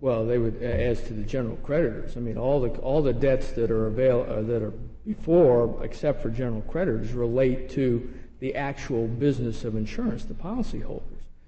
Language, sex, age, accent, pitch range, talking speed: English, male, 50-69, American, 105-130 Hz, 190 wpm